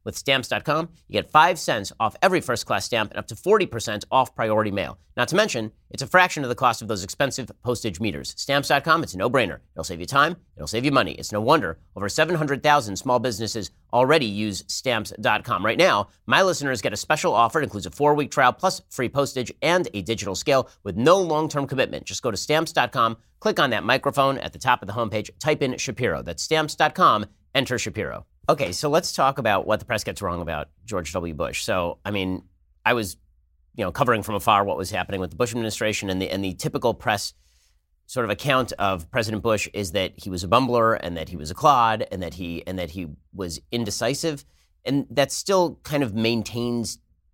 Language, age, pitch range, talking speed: English, 40-59, 90-130 Hz, 210 wpm